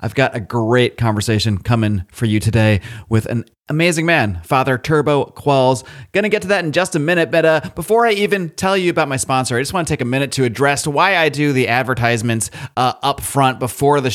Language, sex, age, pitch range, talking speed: English, male, 30-49, 125-155 Hz, 230 wpm